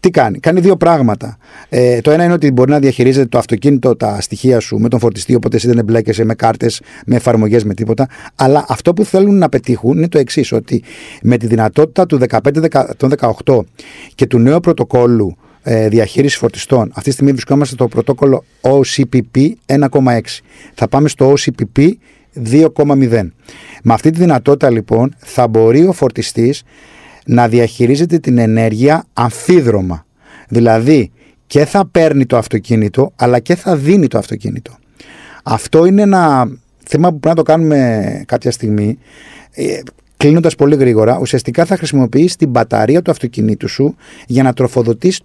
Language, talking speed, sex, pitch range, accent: Greek, 155 wpm, male, 115-150 Hz, native